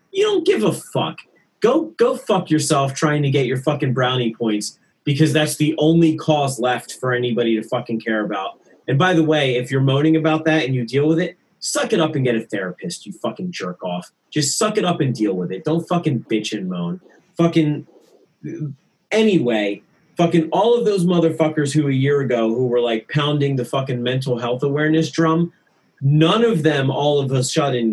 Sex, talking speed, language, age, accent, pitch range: male, 200 wpm, English, 30-49, American, 125-160 Hz